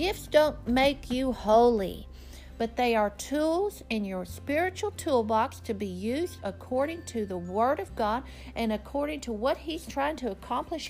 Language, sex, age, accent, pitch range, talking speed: English, female, 50-69, American, 225-305 Hz, 165 wpm